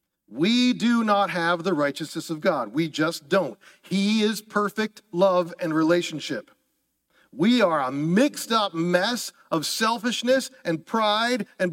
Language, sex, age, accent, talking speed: English, male, 40-59, American, 145 wpm